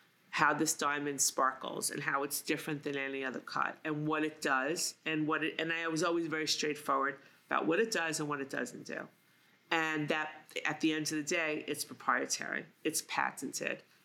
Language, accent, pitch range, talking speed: English, American, 150-165 Hz, 195 wpm